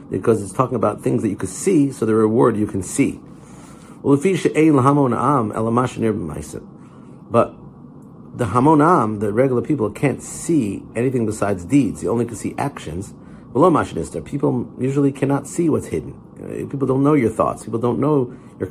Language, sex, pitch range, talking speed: English, male, 105-140 Hz, 150 wpm